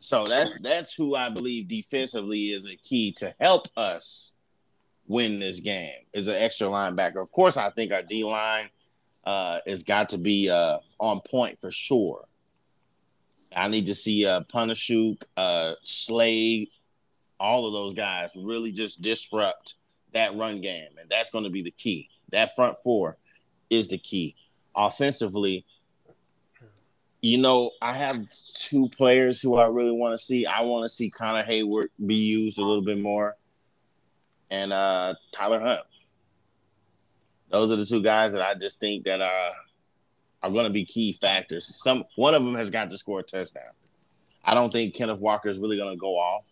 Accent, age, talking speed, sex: American, 30-49, 175 wpm, male